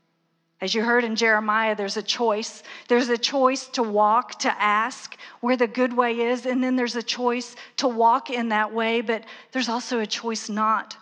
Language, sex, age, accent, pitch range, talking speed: English, female, 40-59, American, 200-235 Hz, 195 wpm